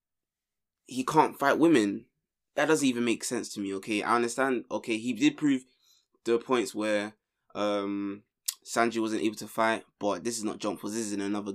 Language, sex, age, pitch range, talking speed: English, male, 20-39, 100-115 Hz, 190 wpm